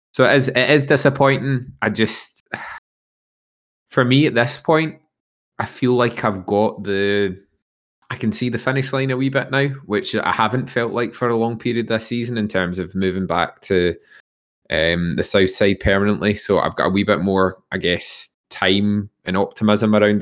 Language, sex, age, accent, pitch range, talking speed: English, male, 20-39, British, 90-110 Hz, 190 wpm